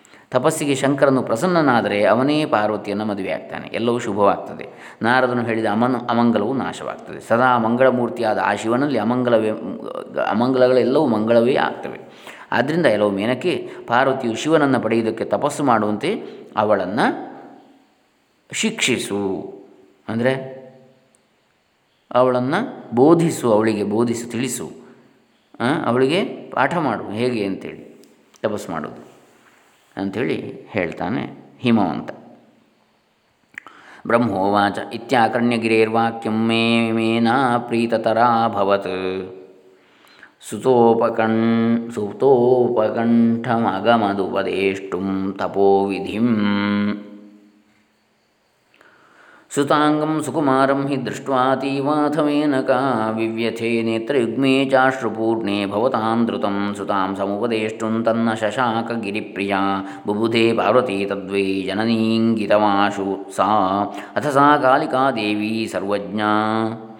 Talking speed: 70 wpm